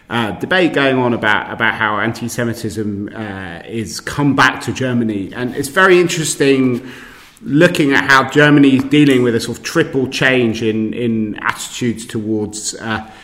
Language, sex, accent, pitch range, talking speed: English, male, British, 105-125 Hz, 155 wpm